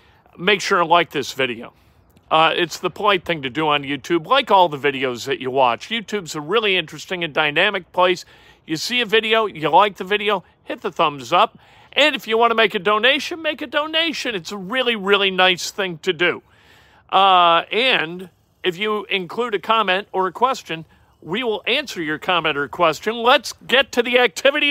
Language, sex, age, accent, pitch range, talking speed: English, male, 50-69, American, 155-220 Hz, 200 wpm